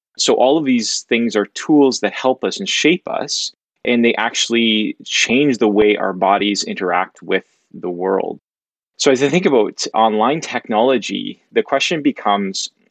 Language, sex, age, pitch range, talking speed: English, male, 20-39, 105-125 Hz, 165 wpm